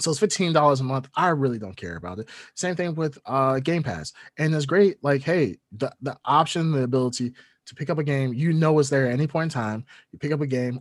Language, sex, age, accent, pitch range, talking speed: English, male, 30-49, American, 125-155 Hz, 255 wpm